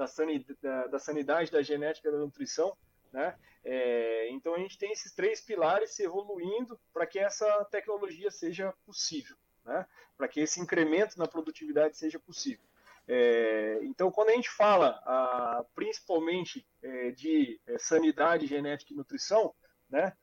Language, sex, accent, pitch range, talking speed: Portuguese, male, Brazilian, 150-210 Hz, 130 wpm